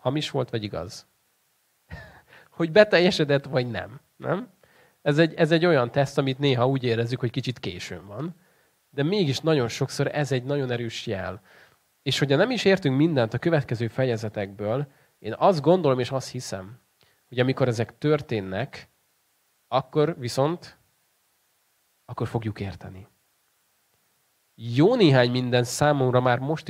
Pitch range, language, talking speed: 110-140 Hz, Hungarian, 140 wpm